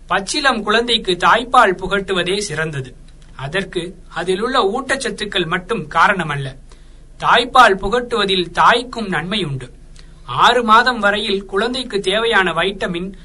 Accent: native